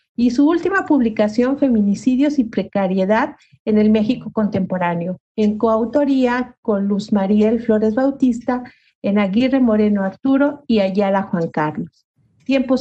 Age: 50-69